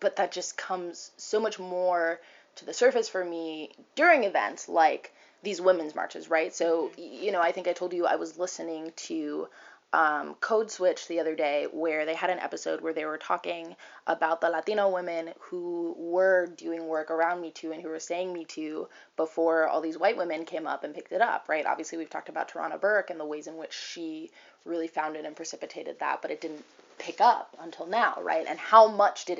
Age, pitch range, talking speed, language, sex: 20-39, 165-205 Hz, 210 wpm, English, female